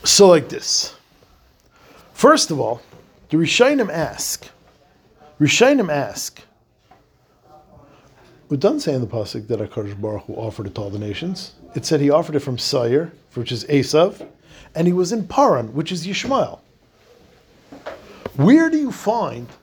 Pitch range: 150-220 Hz